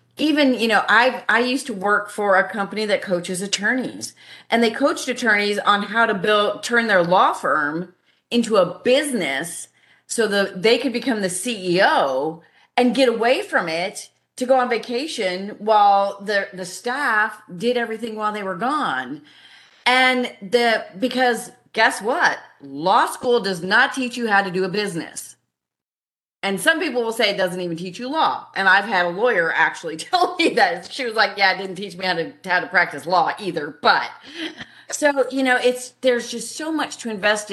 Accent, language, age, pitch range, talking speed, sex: American, English, 40-59, 185-245 Hz, 185 wpm, female